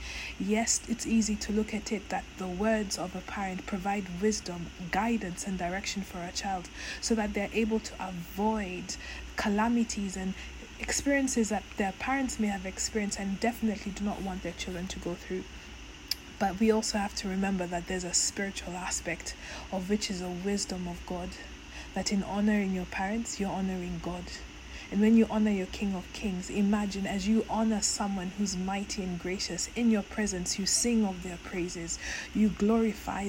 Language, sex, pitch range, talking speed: English, female, 185-215 Hz, 180 wpm